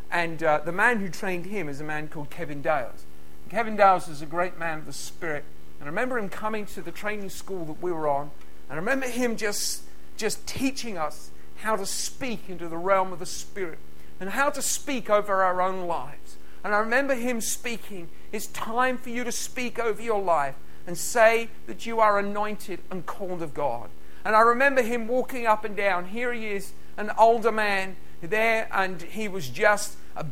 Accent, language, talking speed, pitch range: British, English, 205 wpm, 185-225 Hz